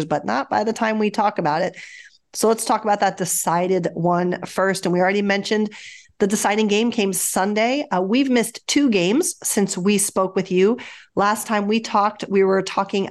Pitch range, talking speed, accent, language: 180-210 Hz, 195 wpm, American, English